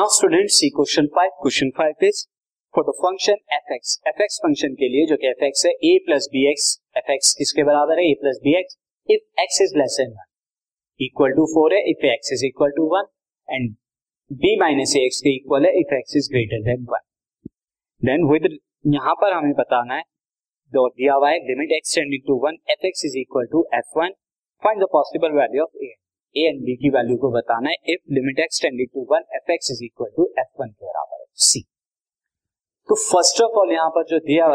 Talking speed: 50 wpm